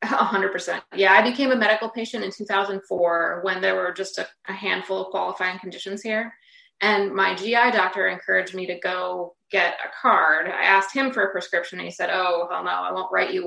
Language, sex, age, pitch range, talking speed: English, female, 20-39, 180-205 Hz, 225 wpm